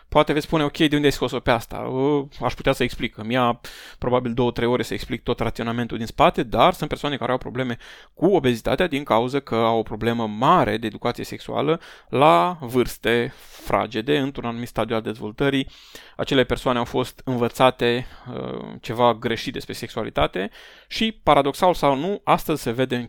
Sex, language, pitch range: male, Romanian, 120-145 Hz